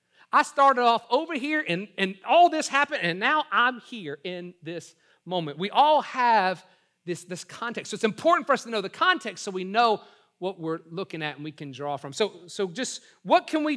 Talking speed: 220 wpm